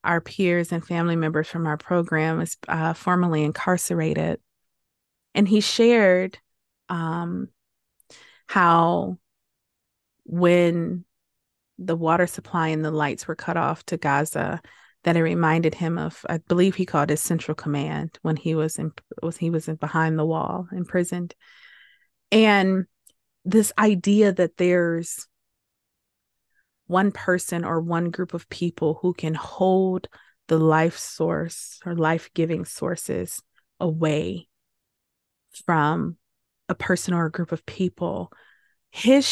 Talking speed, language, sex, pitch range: 130 wpm, English, female, 160-185 Hz